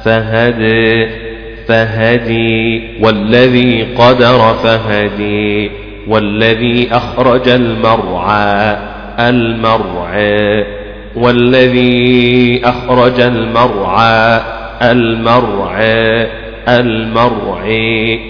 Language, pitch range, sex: Arabic, 110-120 Hz, male